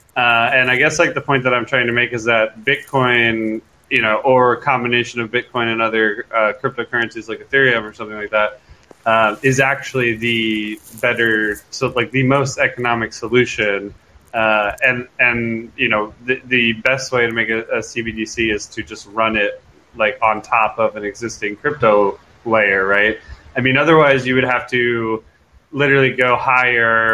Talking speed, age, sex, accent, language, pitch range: 180 wpm, 20-39, male, American, English, 110-125 Hz